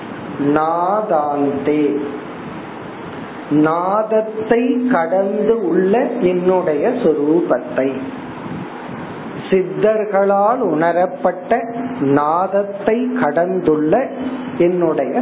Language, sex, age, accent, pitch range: Tamil, male, 40-59, native, 175-230 Hz